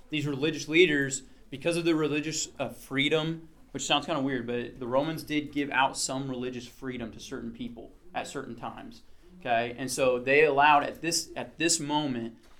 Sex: male